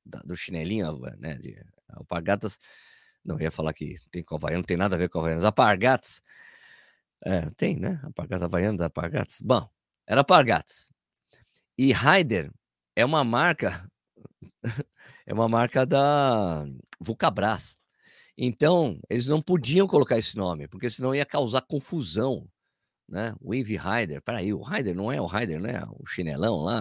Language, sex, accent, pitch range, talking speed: Portuguese, male, Brazilian, 95-145 Hz, 150 wpm